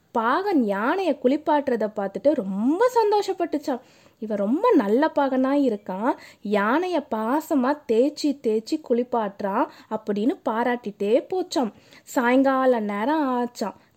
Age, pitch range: 20-39, 230-310 Hz